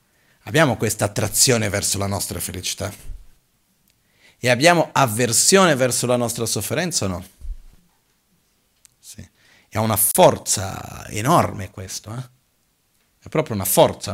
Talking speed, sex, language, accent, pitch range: 115 wpm, male, Italian, native, 100-135 Hz